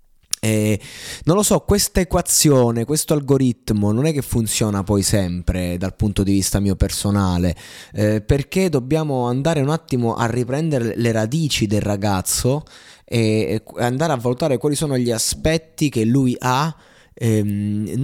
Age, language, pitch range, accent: 20-39, Italian, 105-140 Hz, native